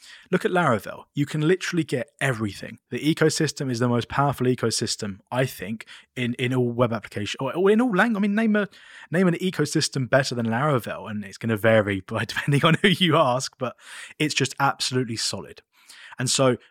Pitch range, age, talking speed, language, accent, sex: 120-165 Hz, 20-39, 190 wpm, English, British, male